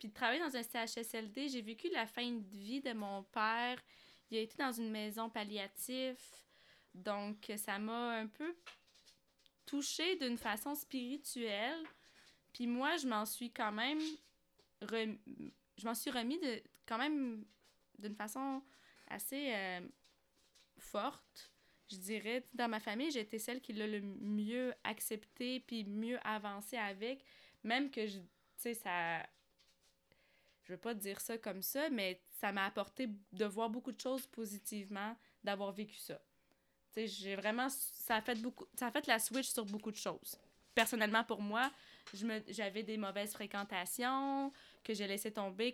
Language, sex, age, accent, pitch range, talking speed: French, female, 20-39, Canadian, 205-250 Hz, 160 wpm